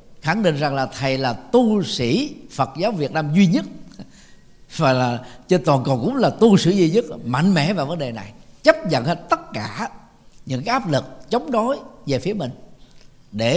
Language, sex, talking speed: Vietnamese, male, 200 wpm